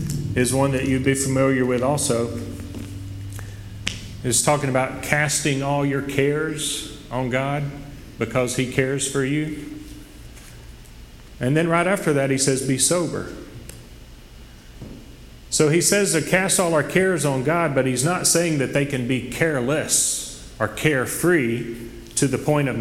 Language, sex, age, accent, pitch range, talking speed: English, male, 40-59, American, 110-145 Hz, 145 wpm